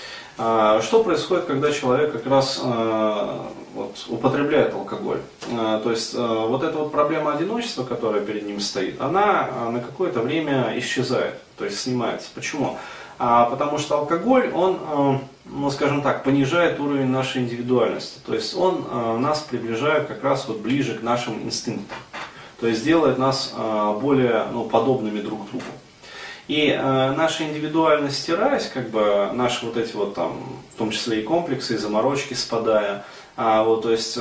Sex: male